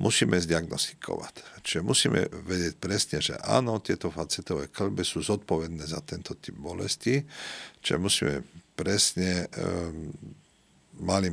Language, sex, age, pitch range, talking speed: Slovak, male, 50-69, 80-100 Hz, 115 wpm